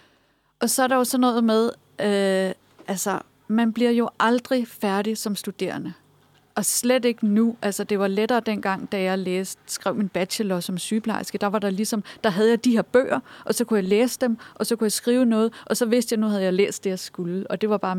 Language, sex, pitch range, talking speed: Danish, female, 190-235 Hz, 225 wpm